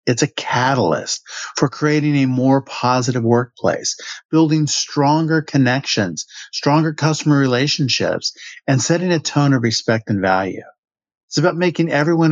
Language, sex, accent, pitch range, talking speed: English, male, American, 115-150 Hz, 130 wpm